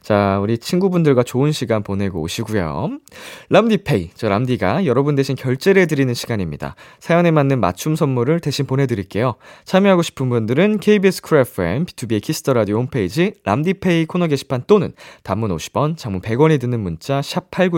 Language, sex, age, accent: Korean, male, 20-39, native